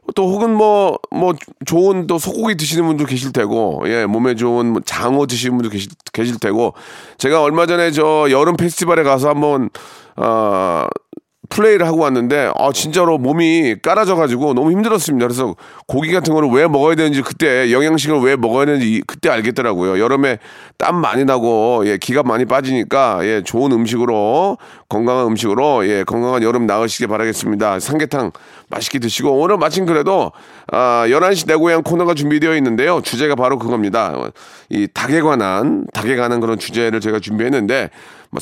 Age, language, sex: 40-59, Korean, male